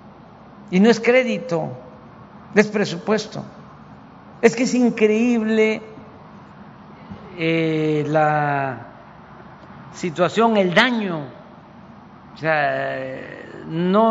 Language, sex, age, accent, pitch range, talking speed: Spanish, male, 50-69, Mexican, 150-210 Hz, 80 wpm